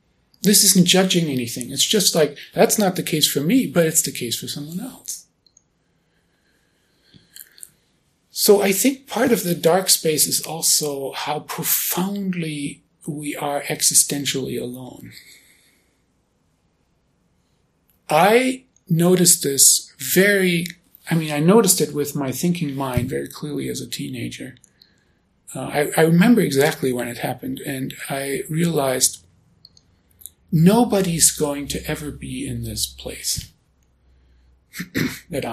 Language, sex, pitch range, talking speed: English, male, 125-180 Hz, 125 wpm